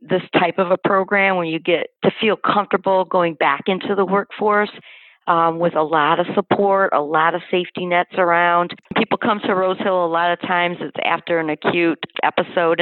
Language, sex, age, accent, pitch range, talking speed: English, female, 40-59, American, 160-180 Hz, 195 wpm